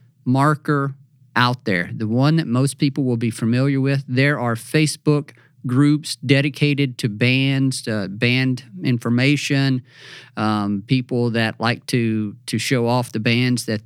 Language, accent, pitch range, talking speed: English, American, 115-140 Hz, 145 wpm